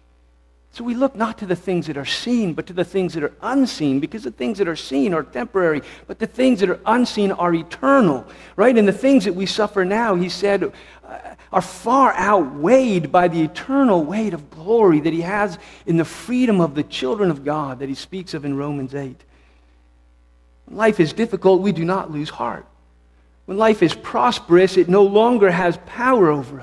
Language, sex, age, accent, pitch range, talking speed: English, male, 50-69, American, 135-225 Hz, 200 wpm